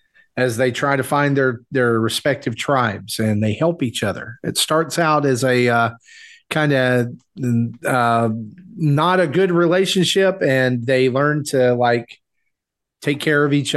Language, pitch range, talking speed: English, 115-145 Hz, 155 wpm